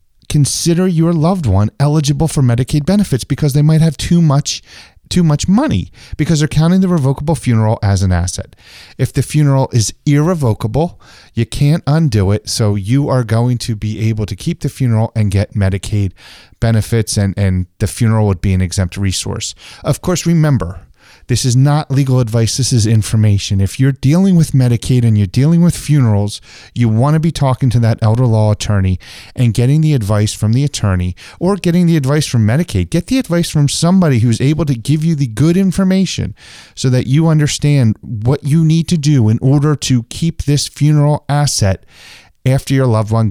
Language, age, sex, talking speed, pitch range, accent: English, 30-49, male, 190 wpm, 105-150 Hz, American